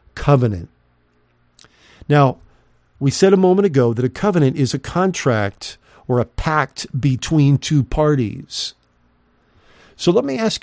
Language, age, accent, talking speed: English, 50-69, American, 130 wpm